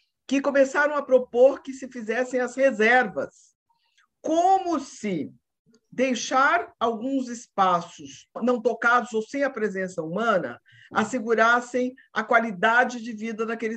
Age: 50-69